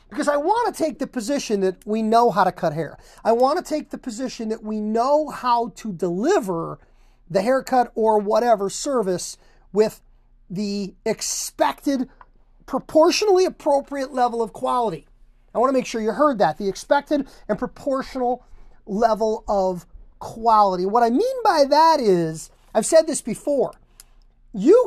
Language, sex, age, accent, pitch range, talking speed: English, male, 40-59, American, 205-280 Hz, 155 wpm